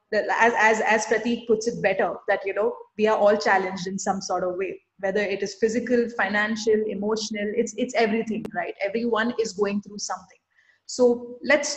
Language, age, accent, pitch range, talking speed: English, 30-49, Indian, 200-235 Hz, 190 wpm